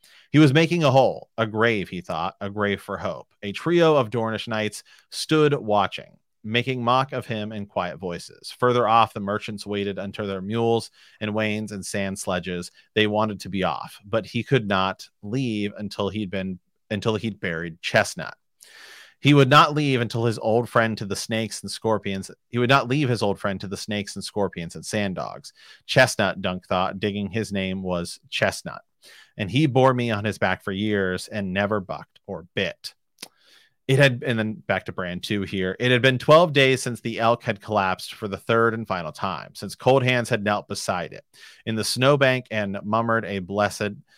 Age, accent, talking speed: 30-49, American, 200 wpm